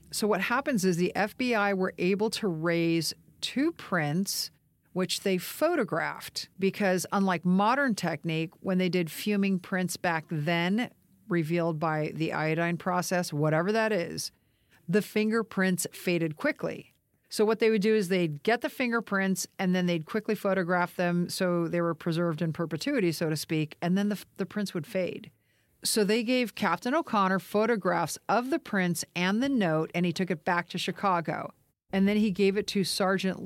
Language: English